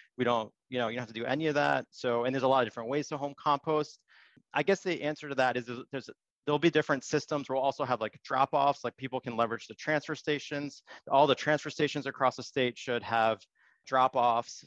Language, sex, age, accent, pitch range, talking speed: English, male, 30-49, American, 120-145 Hz, 235 wpm